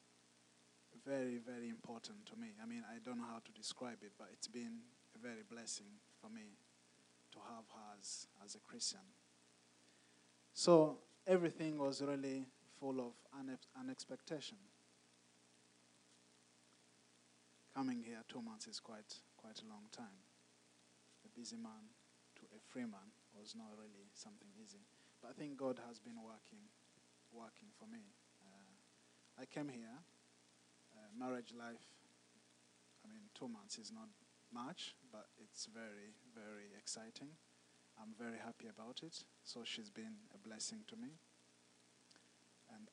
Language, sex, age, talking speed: English, male, 20-39, 140 wpm